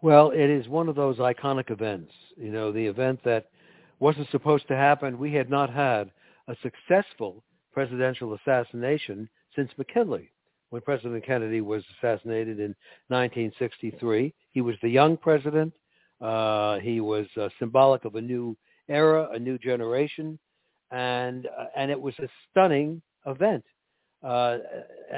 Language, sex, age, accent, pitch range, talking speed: English, male, 60-79, American, 120-155 Hz, 145 wpm